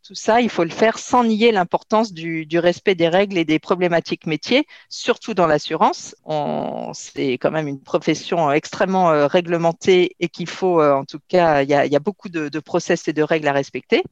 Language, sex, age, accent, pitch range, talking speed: French, female, 50-69, French, 160-205 Hz, 200 wpm